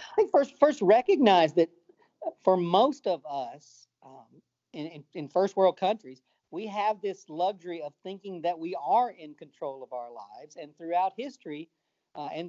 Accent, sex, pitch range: American, male, 140-185 Hz